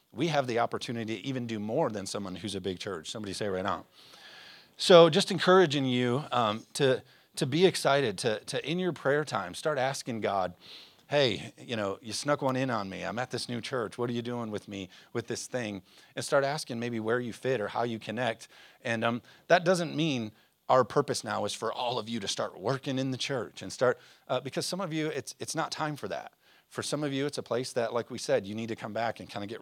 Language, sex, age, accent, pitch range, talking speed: English, male, 40-59, American, 105-135 Hz, 245 wpm